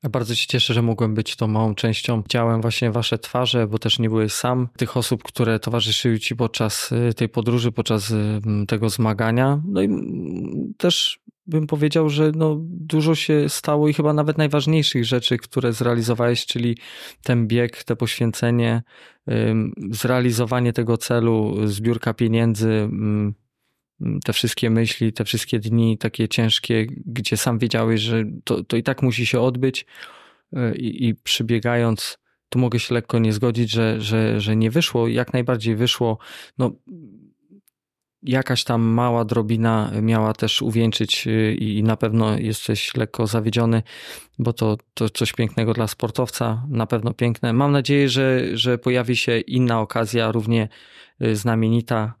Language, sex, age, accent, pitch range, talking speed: Polish, male, 20-39, native, 110-125 Hz, 145 wpm